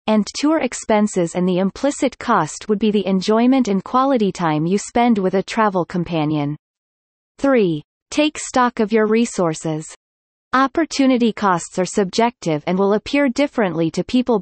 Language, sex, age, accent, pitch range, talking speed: English, female, 30-49, American, 180-245 Hz, 150 wpm